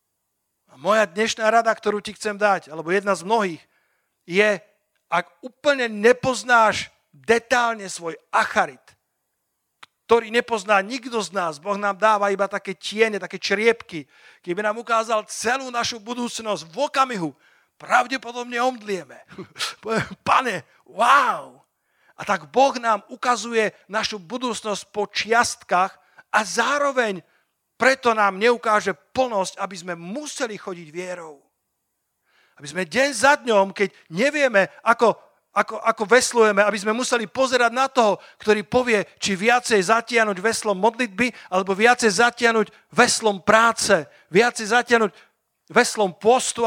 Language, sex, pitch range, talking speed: Slovak, male, 195-235 Hz, 125 wpm